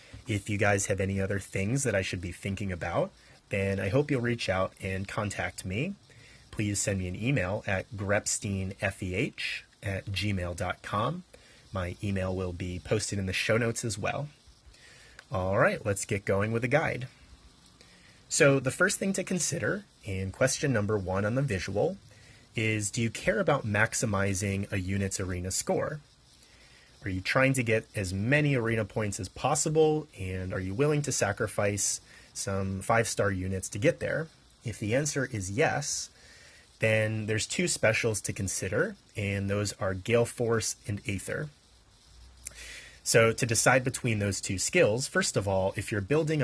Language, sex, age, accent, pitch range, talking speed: English, male, 30-49, American, 95-125 Hz, 165 wpm